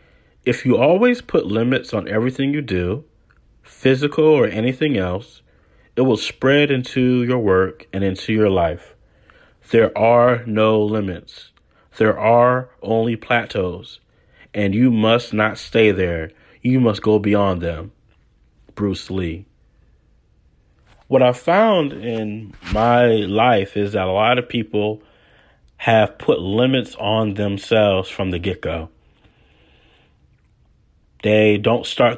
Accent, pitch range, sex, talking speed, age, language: American, 95-115 Hz, male, 125 wpm, 30-49, English